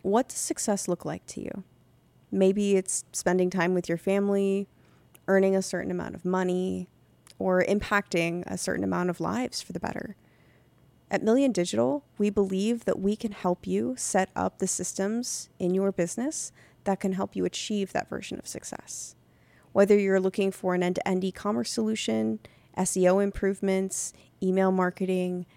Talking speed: 160 wpm